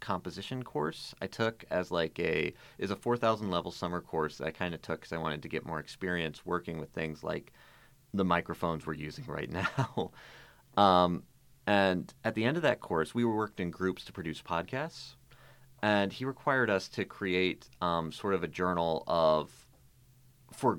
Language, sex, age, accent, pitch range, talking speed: English, male, 30-49, American, 85-115 Hz, 180 wpm